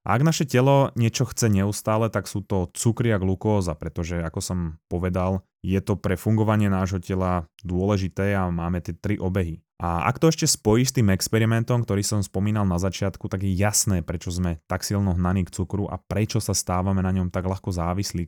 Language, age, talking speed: Slovak, 20-39, 195 wpm